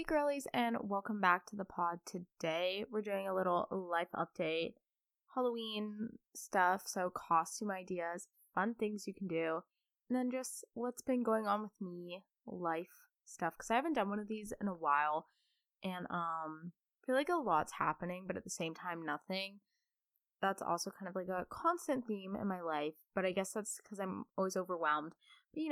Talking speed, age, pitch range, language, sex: 190 wpm, 20-39, 170-235 Hz, English, female